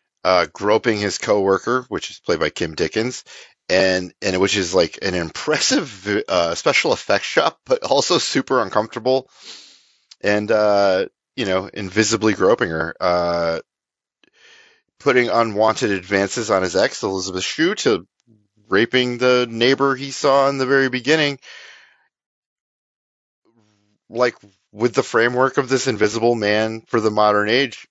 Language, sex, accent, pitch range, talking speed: English, male, American, 95-115 Hz, 135 wpm